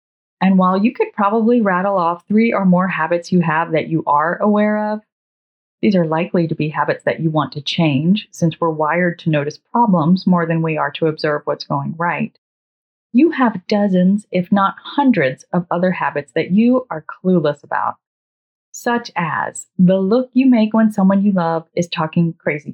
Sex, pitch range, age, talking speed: female, 170-215 Hz, 30-49, 185 wpm